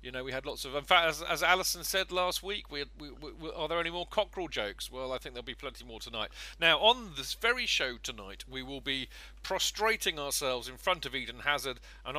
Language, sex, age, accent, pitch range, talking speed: English, male, 40-59, British, 125-180 Hz, 235 wpm